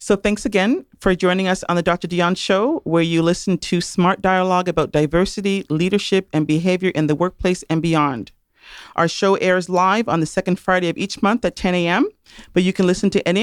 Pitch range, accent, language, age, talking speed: 165-195 Hz, American, English, 40-59, 210 wpm